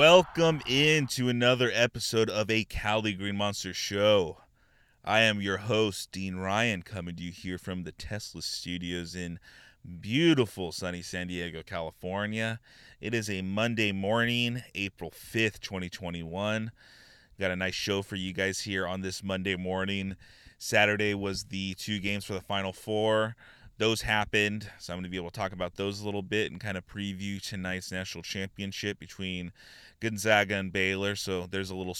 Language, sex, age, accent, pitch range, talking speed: English, male, 20-39, American, 95-105 Hz, 170 wpm